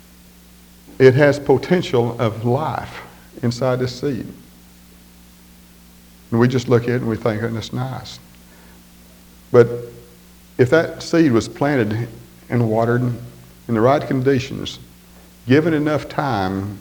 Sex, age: male, 50-69